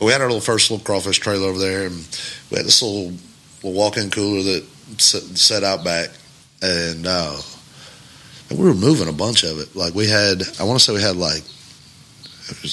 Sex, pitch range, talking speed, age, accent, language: male, 90-105 Hz, 205 wpm, 30-49, American, English